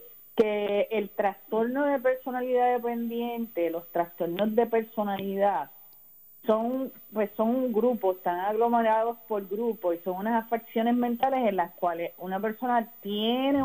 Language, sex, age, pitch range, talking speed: Spanish, female, 30-49, 190-240 Hz, 130 wpm